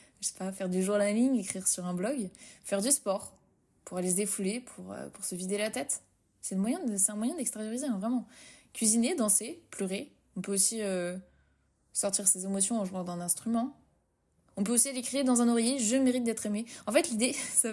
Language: French